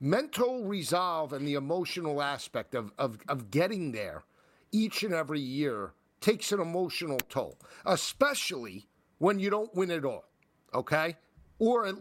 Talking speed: 140 wpm